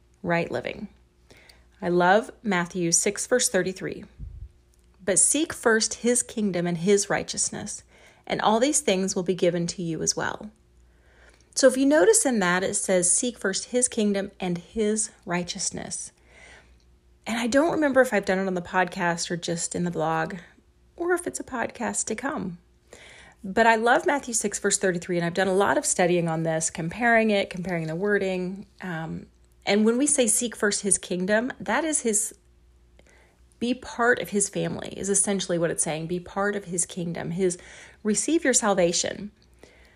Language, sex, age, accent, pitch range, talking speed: English, female, 30-49, American, 165-215 Hz, 175 wpm